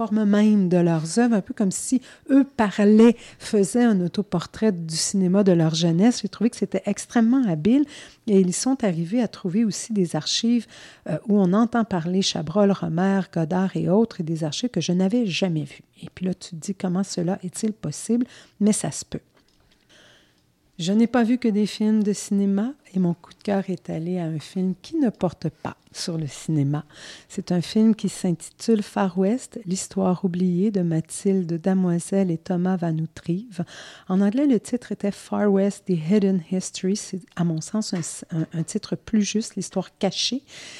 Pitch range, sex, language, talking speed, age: 175-220 Hz, female, French, 195 wpm, 50-69